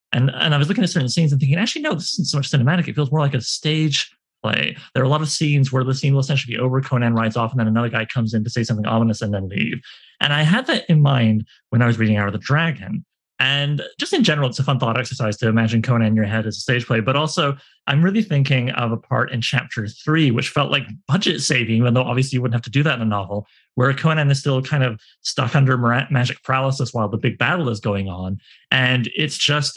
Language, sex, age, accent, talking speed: English, male, 30-49, American, 270 wpm